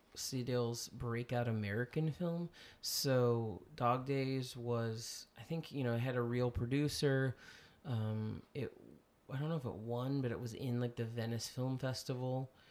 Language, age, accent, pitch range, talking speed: English, 20-39, American, 115-130 Hz, 160 wpm